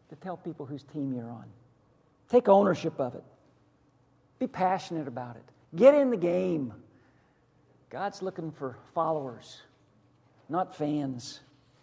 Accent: American